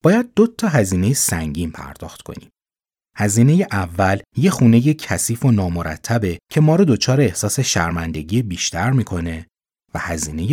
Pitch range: 90-135 Hz